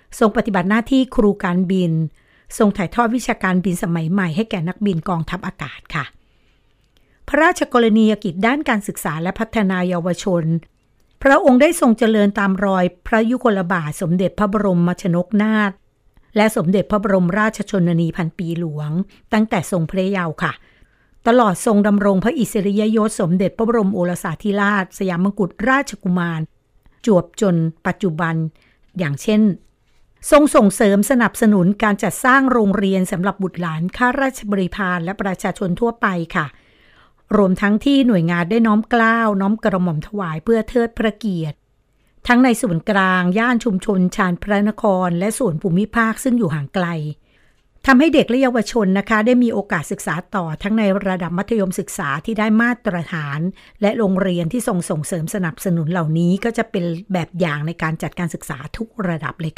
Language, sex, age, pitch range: Thai, female, 60-79, 175-220 Hz